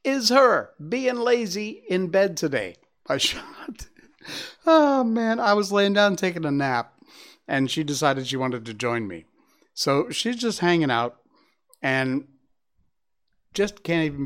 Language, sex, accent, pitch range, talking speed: English, male, American, 130-185 Hz, 145 wpm